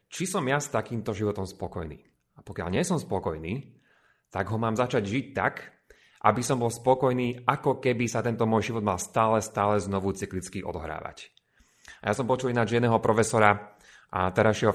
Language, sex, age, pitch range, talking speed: Slovak, male, 30-49, 95-120 Hz, 175 wpm